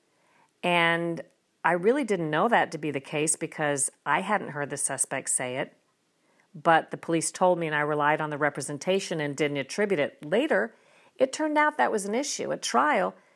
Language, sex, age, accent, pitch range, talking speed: English, female, 50-69, American, 150-200 Hz, 195 wpm